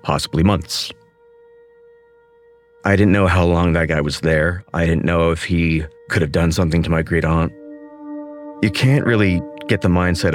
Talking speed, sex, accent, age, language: 170 wpm, male, American, 30-49, English